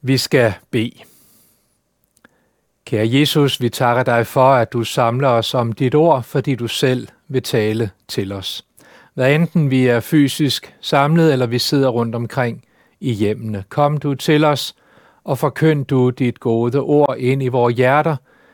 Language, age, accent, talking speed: Danish, 60-79, native, 160 wpm